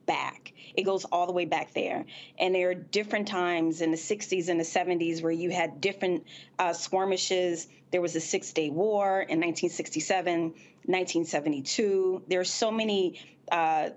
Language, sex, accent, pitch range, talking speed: English, female, American, 170-205 Hz, 165 wpm